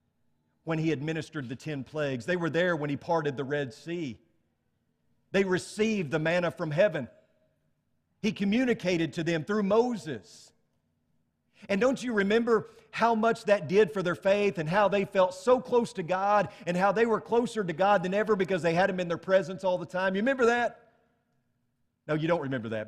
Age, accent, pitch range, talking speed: 40-59, American, 145-205 Hz, 190 wpm